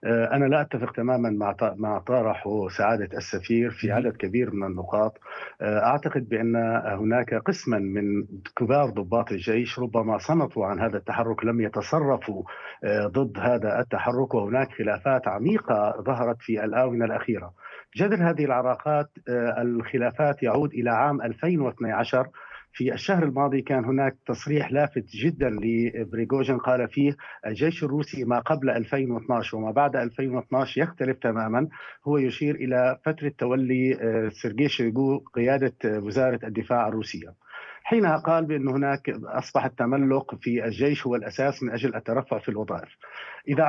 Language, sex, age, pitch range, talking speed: Arabic, male, 50-69, 120-145 Hz, 130 wpm